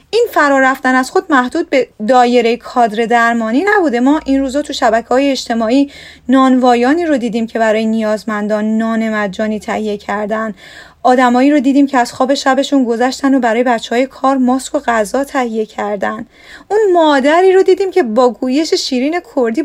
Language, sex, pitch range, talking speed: Persian, female, 225-285 Hz, 165 wpm